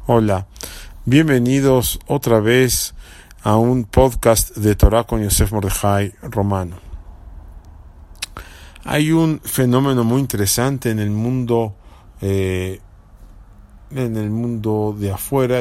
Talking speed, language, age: 105 wpm, English, 50-69